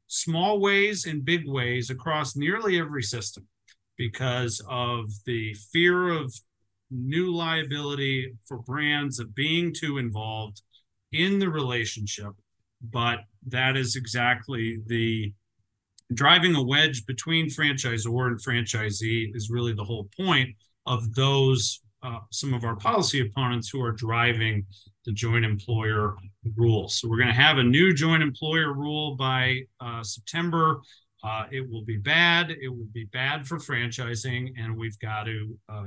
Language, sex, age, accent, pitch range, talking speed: English, male, 40-59, American, 110-150 Hz, 145 wpm